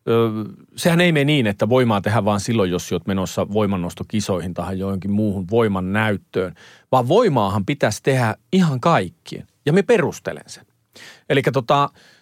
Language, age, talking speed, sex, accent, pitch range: Finnish, 40-59, 150 wpm, male, native, 105-150 Hz